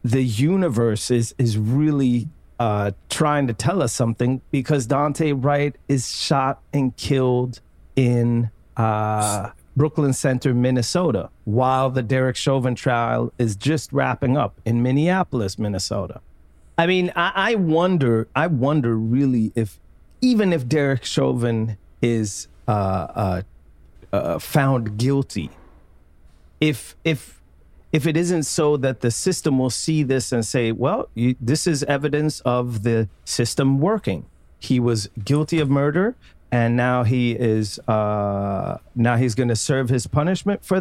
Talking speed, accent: 135 wpm, American